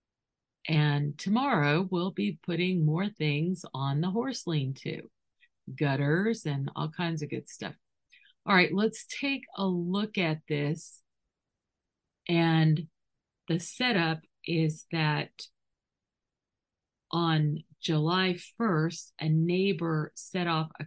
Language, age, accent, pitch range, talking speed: English, 50-69, American, 155-185 Hz, 115 wpm